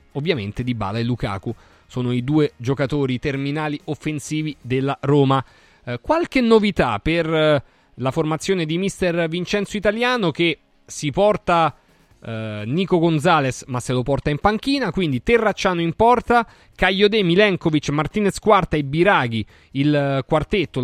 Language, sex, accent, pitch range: Italian, male, native, 125-195 Hz